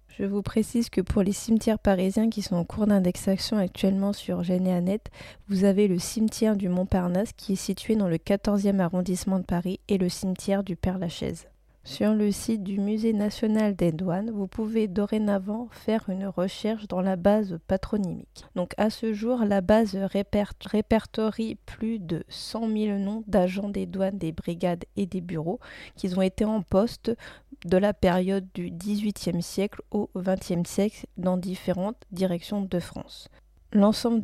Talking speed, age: 165 wpm, 20-39